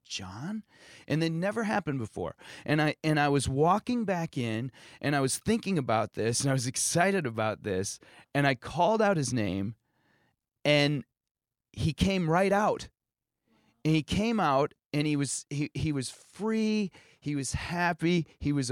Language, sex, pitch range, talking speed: English, male, 120-155 Hz, 170 wpm